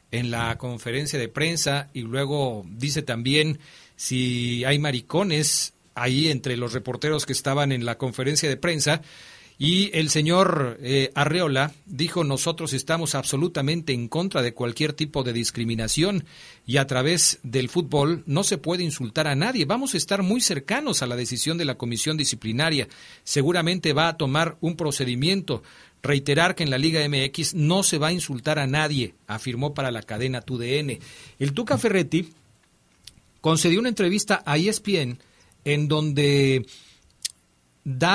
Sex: male